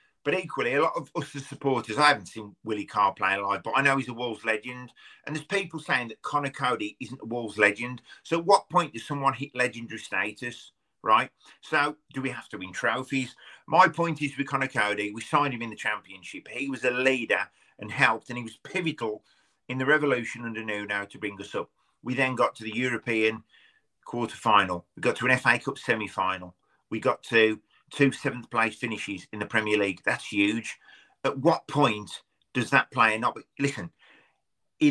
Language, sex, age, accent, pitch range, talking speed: English, male, 40-59, British, 110-140 Hz, 200 wpm